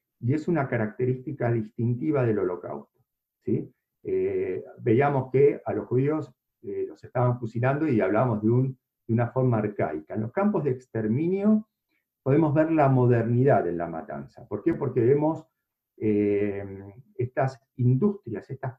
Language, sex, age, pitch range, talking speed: Spanish, male, 50-69, 120-165 Hz, 140 wpm